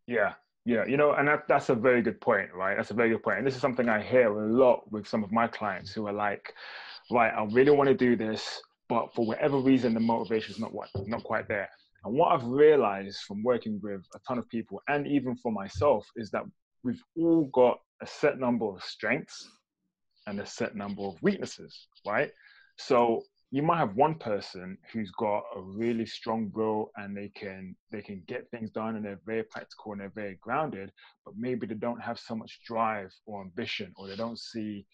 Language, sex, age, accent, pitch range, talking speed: English, male, 20-39, British, 105-130 Hz, 210 wpm